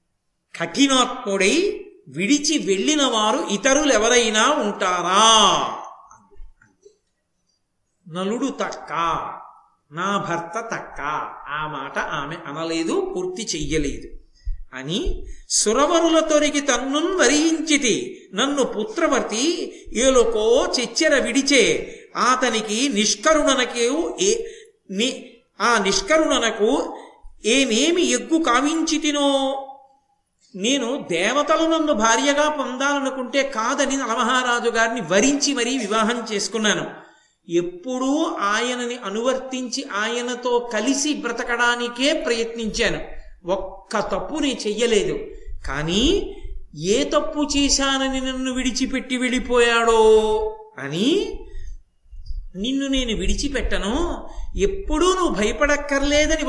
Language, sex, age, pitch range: Telugu, male, 50-69, 220-305 Hz